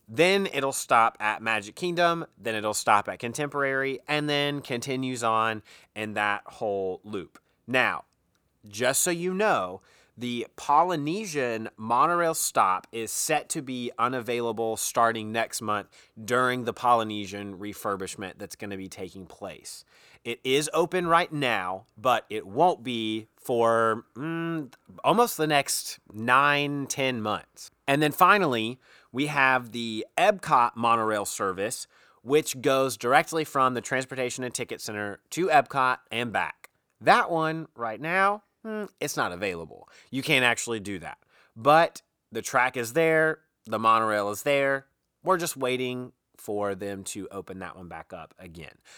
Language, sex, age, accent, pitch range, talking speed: English, male, 30-49, American, 110-150 Hz, 145 wpm